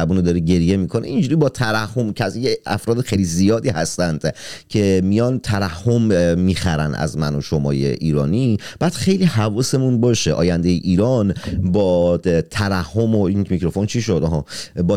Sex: male